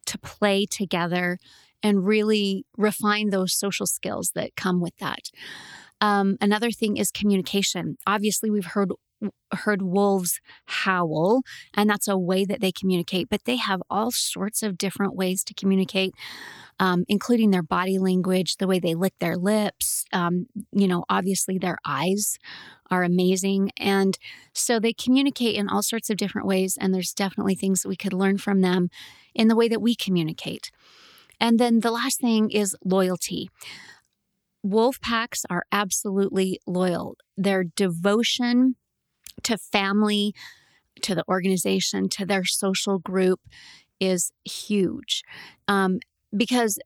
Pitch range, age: 185-215 Hz, 30-49